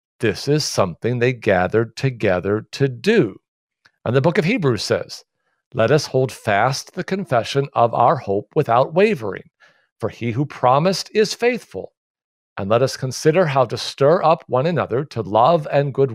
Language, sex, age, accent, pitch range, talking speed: English, male, 50-69, American, 125-185 Hz, 165 wpm